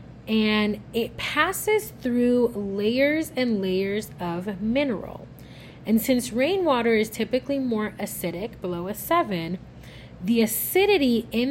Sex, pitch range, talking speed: female, 195-265 Hz, 115 wpm